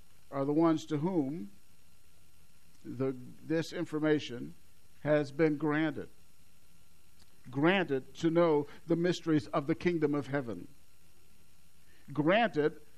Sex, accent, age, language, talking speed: male, American, 50-69, English, 100 wpm